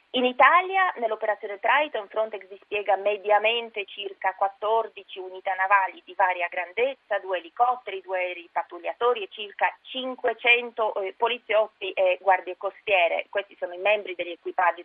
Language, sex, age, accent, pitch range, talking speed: Italian, female, 30-49, native, 180-225 Hz, 130 wpm